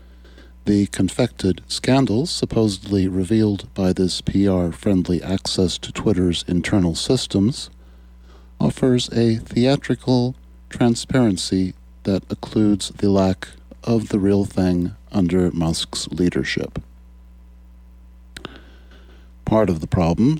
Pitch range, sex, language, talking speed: 70-105 Hz, male, English, 95 wpm